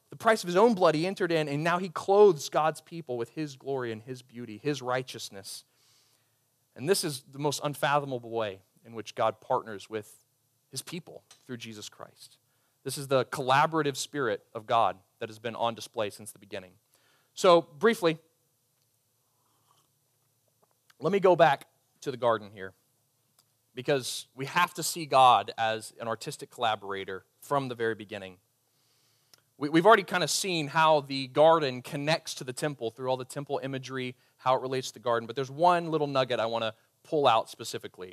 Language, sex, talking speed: English, male, 180 wpm